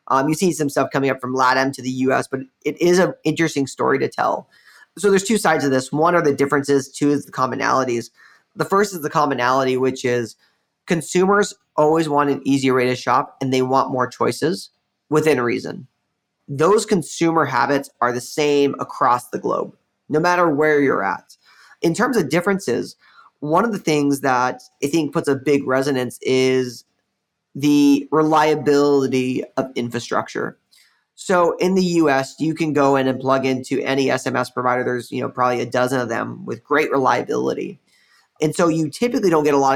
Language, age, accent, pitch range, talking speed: English, 20-39, American, 130-160 Hz, 185 wpm